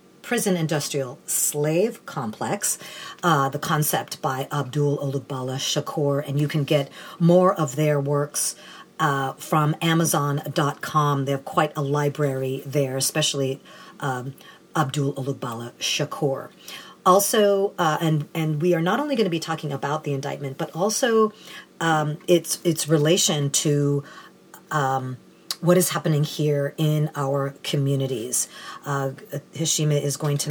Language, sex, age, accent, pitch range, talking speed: English, female, 50-69, American, 140-160 Hz, 135 wpm